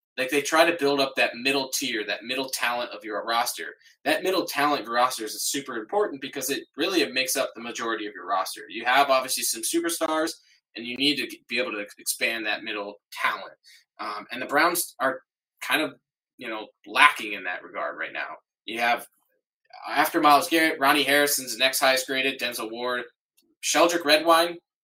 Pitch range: 130-170 Hz